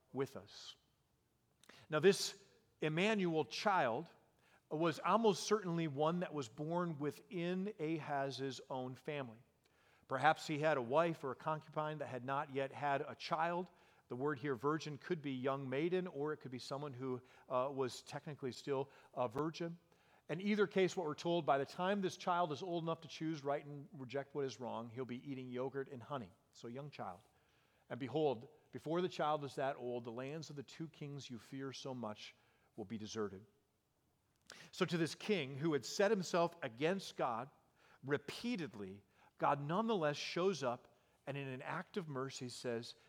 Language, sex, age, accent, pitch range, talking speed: English, male, 40-59, American, 125-165 Hz, 175 wpm